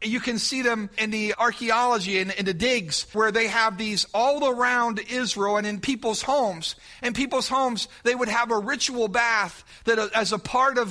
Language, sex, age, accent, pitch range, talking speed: English, male, 40-59, American, 195-240 Hz, 200 wpm